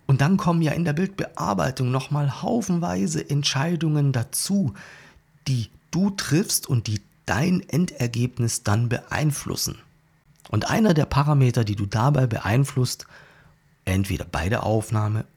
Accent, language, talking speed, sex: German, German, 130 wpm, male